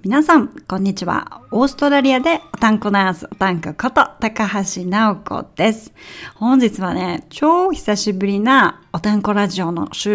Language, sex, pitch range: Japanese, female, 190-260 Hz